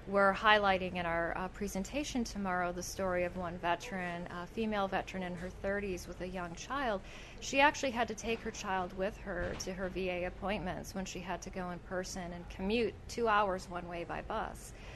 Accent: American